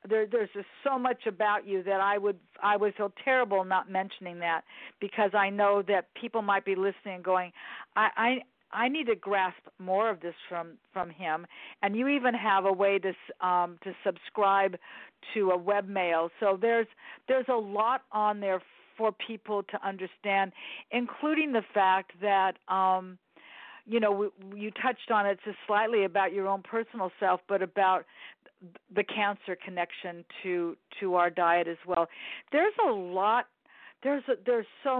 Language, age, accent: English, 50-69, American